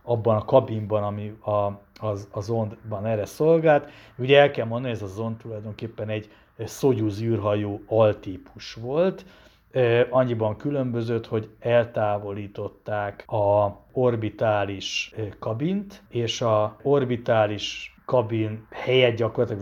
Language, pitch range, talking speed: Hungarian, 105-120 Hz, 105 wpm